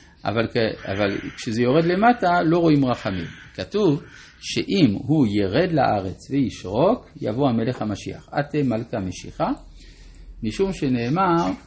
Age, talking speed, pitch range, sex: 50-69, 115 wpm, 110-160 Hz, male